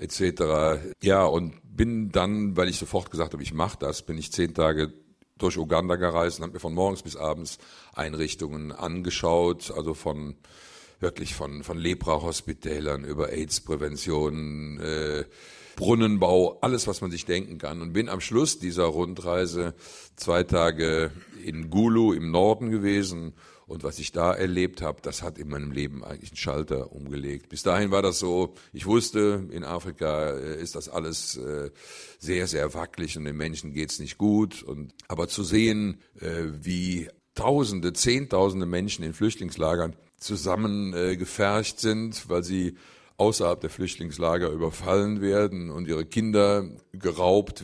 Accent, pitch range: German, 80-95 Hz